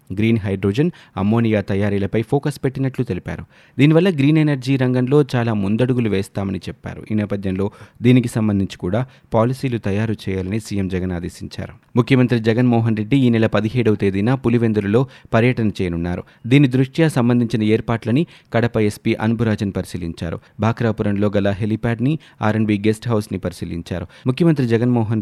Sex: male